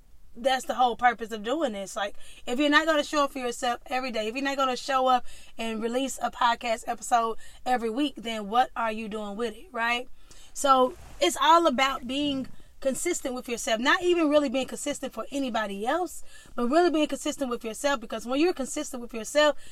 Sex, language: female, English